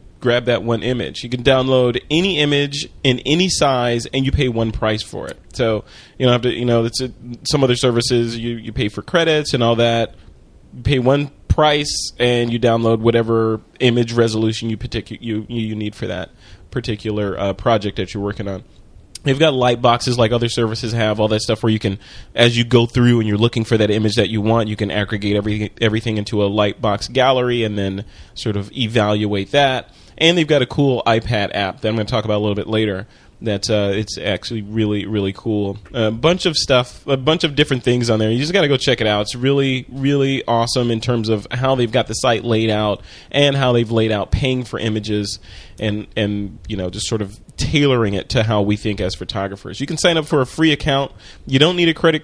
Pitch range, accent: 105-130 Hz, American